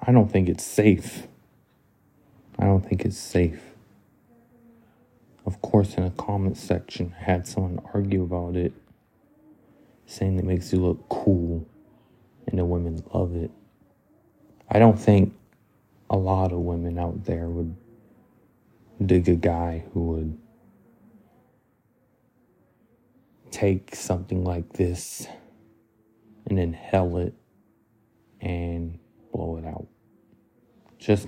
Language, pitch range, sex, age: English, 90-110 Hz, male, 30-49